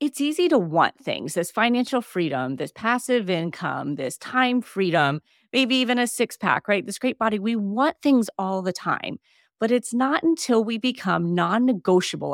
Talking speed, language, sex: 175 wpm, English, female